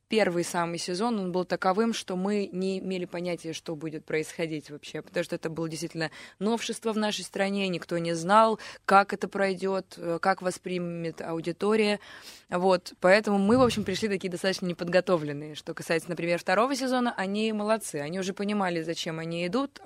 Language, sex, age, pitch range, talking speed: Russian, female, 20-39, 160-200 Hz, 165 wpm